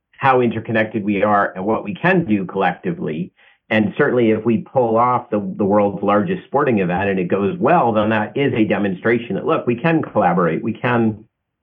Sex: male